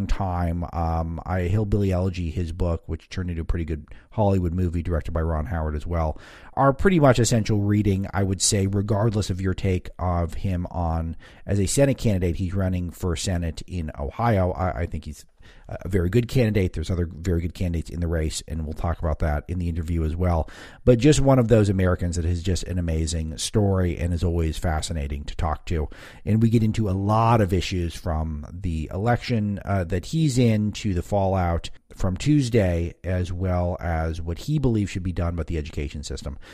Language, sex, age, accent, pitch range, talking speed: English, male, 40-59, American, 85-110 Hz, 205 wpm